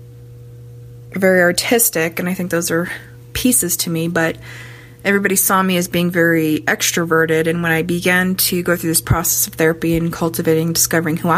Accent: American